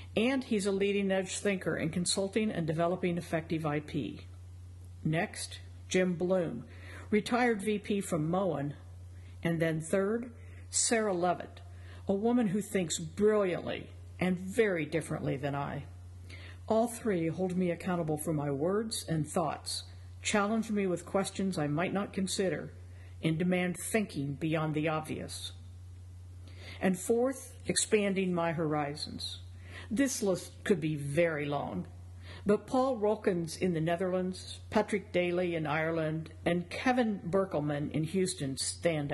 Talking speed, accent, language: 130 wpm, American, English